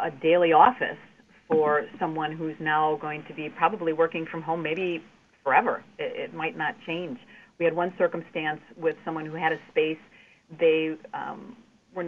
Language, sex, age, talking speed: English, female, 40-59, 175 wpm